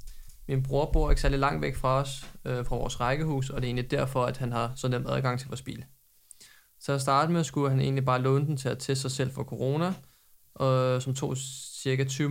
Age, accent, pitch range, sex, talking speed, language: 20-39, native, 125-135 Hz, male, 235 wpm, Danish